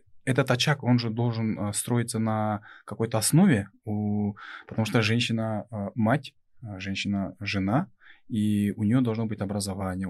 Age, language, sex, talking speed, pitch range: 20-39, Russian, male, 115 wpm, 100-125 Hz